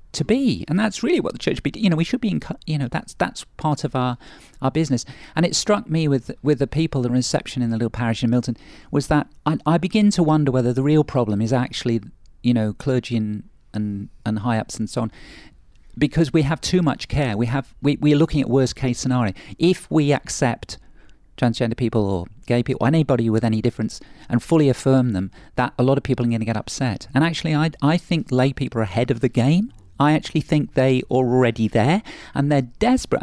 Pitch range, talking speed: 120-150 Hz, 230 wpm